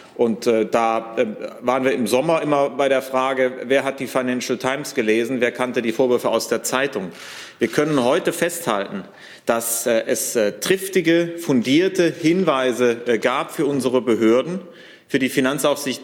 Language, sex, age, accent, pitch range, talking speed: German, male, 40-59, German, 120-145 Hz, 145 wpm